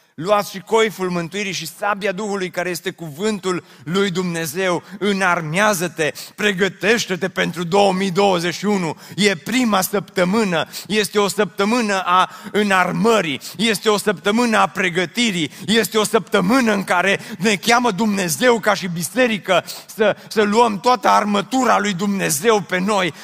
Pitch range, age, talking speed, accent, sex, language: 175-220 Hz, 30-49, 125 wpm, native, male, Romanian